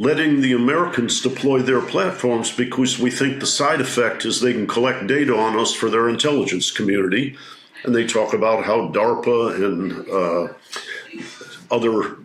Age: 50-69